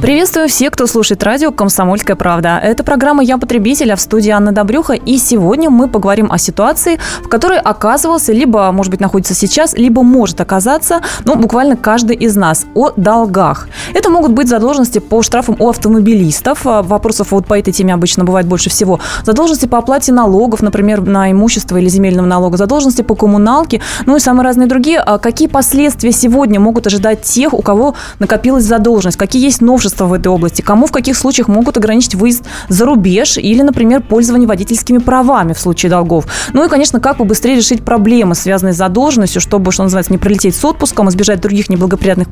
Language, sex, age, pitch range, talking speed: Russian, female, 20-39, 200-255 Hz, 180 wpm